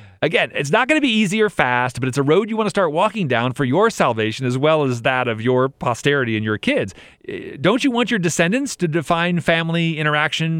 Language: English